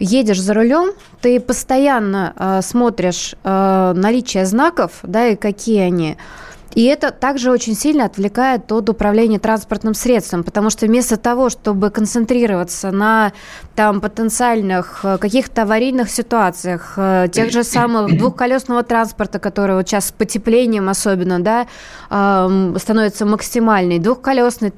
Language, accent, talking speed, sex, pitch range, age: Russian, native, 120 wpm, female, 205-245 Hz, 20-39